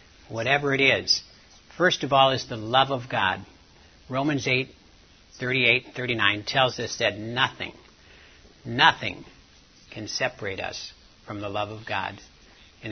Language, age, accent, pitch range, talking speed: English, 60-79, American, 100-145 Hz, 135 wpm